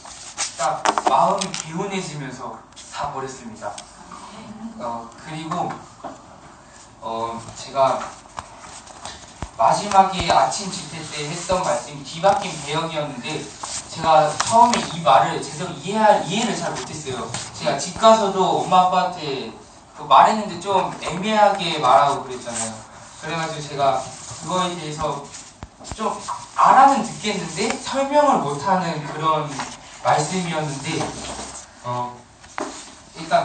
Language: Korean